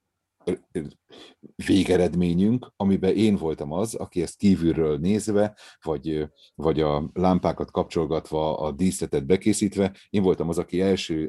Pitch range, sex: 75-95 Hz, male